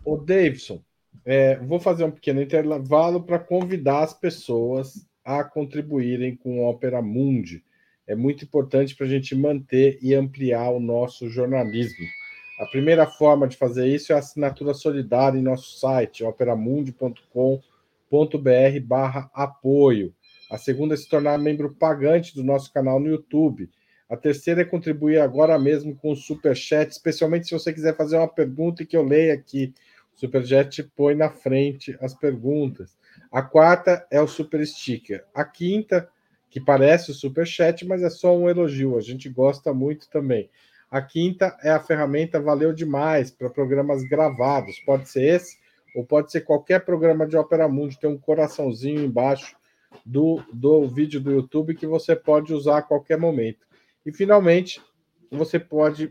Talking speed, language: 160 wpm, Portuguese